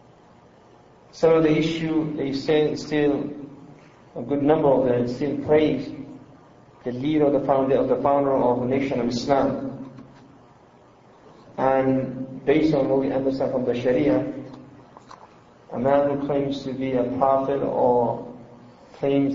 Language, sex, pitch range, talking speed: English, male, 130-145 Hz, 140 wpm